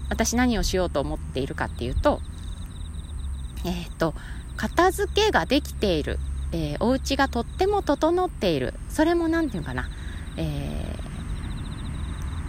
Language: Japanese